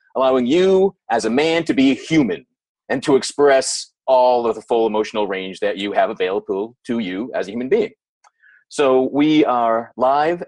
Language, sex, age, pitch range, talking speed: English, male, 30-49, 115-190 Hz, 180 wpm